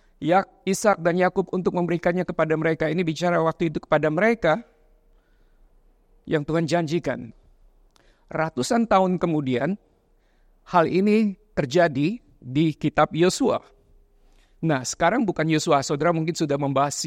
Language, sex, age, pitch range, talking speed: Indonesian, male, 50-69, 155-195 Hz, 120 wpm